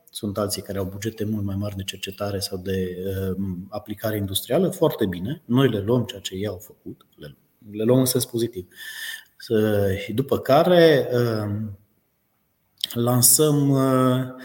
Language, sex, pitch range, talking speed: Romanian, male, 100-130 Hz, 155 wpm